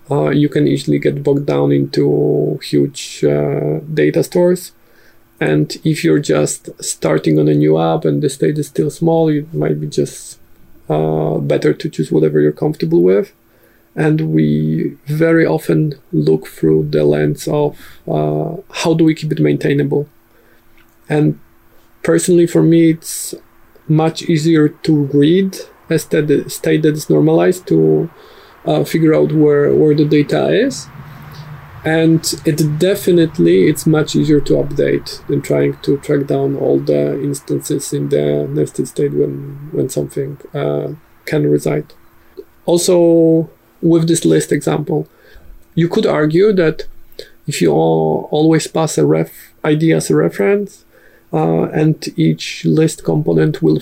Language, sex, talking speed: English, male, 145 wpm